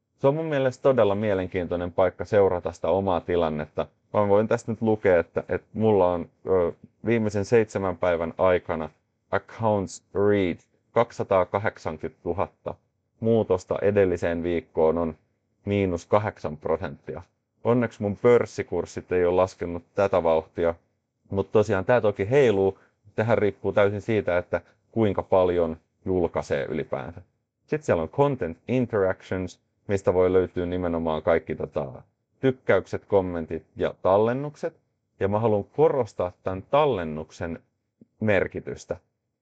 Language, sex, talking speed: Finnish, male, 120 wpm